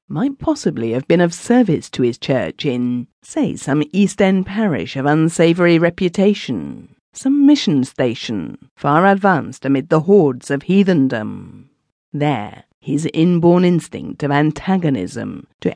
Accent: British